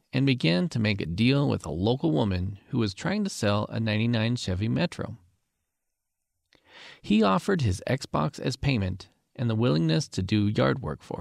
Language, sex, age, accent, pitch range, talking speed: English, male, 40-59, American, 100-160 Hz, 175 wpm